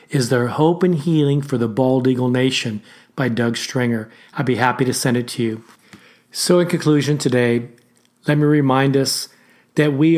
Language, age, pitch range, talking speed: English, 40-59, 125-155 Hz, 185 wpm